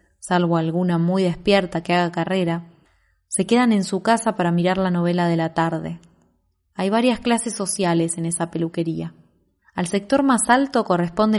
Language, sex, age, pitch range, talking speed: Spanish, female, 20-39, 165-200 Hz, 165 wpm